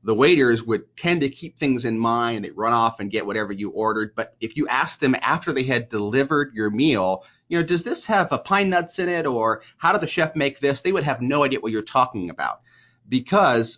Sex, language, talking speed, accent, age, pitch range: male, English, 240 wpm, American, 30-49, 110-135 Hz